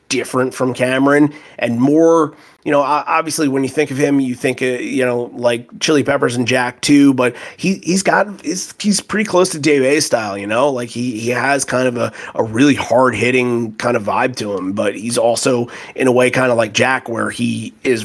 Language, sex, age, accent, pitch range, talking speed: English, male, 30-49, American, 115-135 Hz, 220 wpm